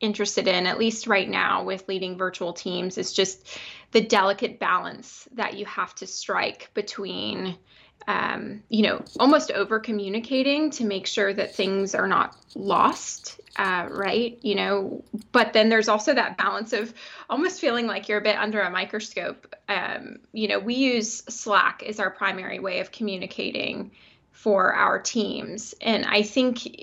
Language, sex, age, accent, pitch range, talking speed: English, female, 20-39, American, 195-225 Hz, 165 wpm